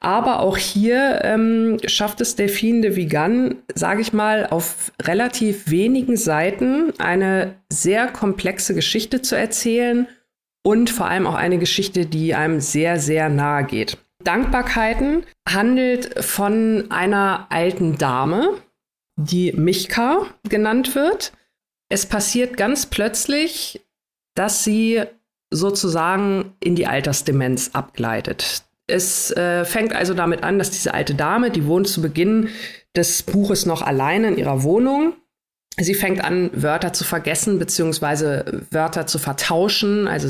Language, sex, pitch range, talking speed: German, female, 160-220 Hz, 130 wpm